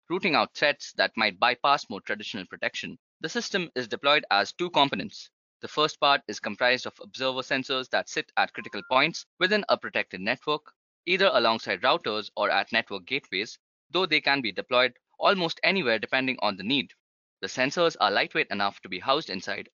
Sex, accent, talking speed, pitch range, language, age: male, Indian, 180 wpm, 125-170 Hz, English, 20-39